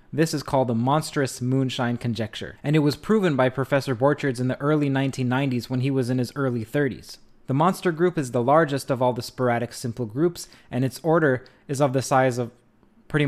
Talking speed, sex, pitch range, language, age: 210 wpm, male, 120-145 Hz, English, 20-39